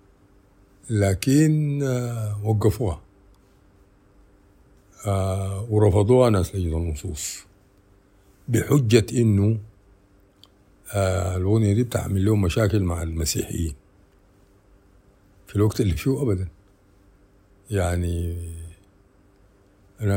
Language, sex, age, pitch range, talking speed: Arabic, male, 60-79, 95-100 Hz, 70 wpm